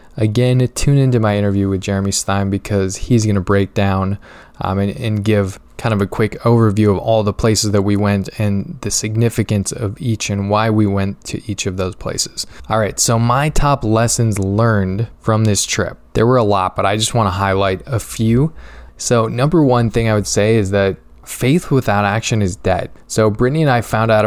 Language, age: English, 20-39